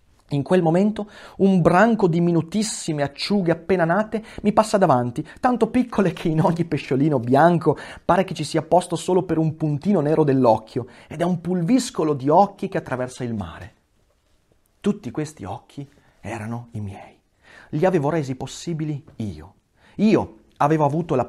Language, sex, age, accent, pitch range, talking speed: Italian, male, 30-49, native, 130-180 Hz, 160 wpm